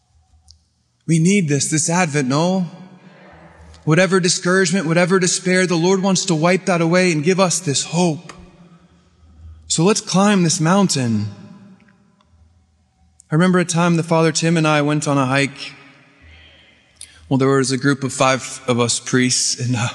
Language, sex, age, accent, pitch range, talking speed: English, male, 20-39, American, 135-185 Hz, 155 wpm